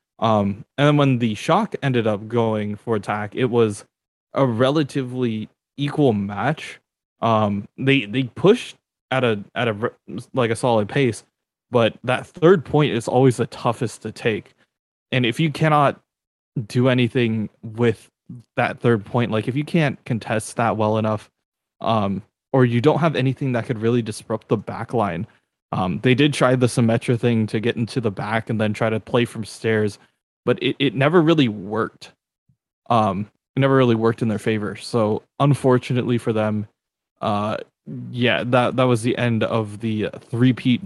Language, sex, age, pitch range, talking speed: English, male, 20-39, 110-130 Hz, 170 wpm